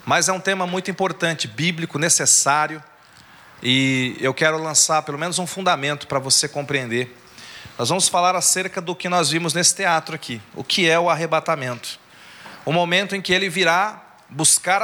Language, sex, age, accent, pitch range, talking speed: Portuguese, male, 40-59, Brazilian, 150-185 Hz, 170 wpm